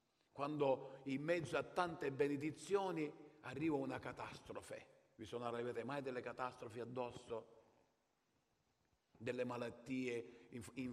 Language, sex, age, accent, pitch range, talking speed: Italian, male, 50-69, native, 125-180 Hz, 105 wpm